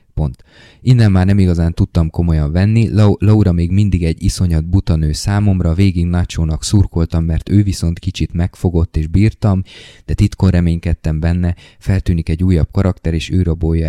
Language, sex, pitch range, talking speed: Hungarian, male, 85-105 Hz, 155 wpm